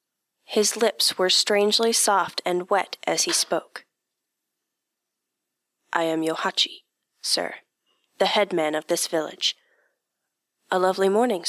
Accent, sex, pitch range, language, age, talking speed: American, female, 165-200 Hz, English, 30-49, 115 wpm